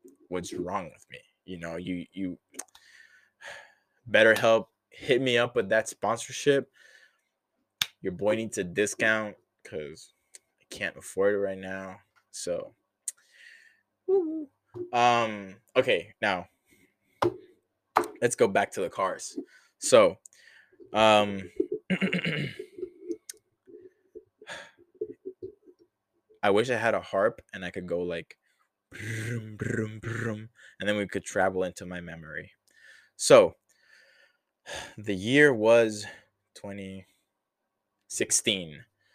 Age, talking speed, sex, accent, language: 20-39, 100 wpm, male, American, English